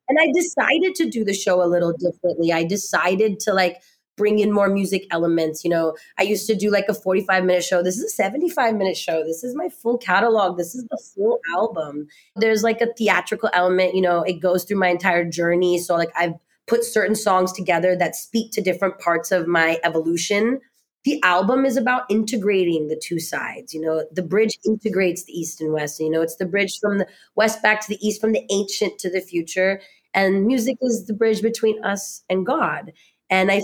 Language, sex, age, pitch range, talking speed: English, female, 20-39, 180-225 Hz, 215 wpm